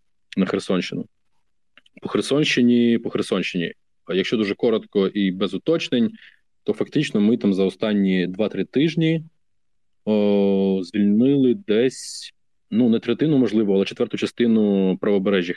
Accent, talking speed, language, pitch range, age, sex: native, 125 wpm, Ukrainian, 95-120 Hz, 20-39, male